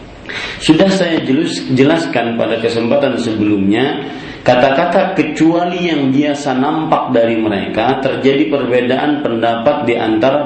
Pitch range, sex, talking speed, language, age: 110-150 Hz, male, 105 wpm, Malay, 40-59